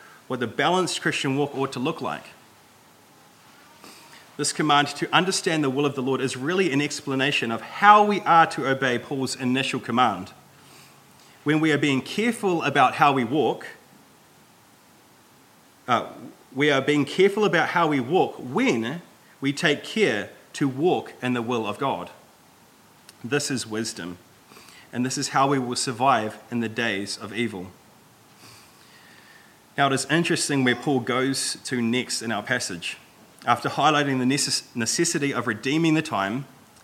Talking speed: 155 wpm